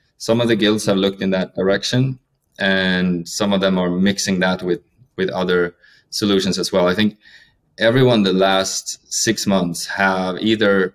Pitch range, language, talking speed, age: 95-105 Hz, English, 170 wpm, 20-39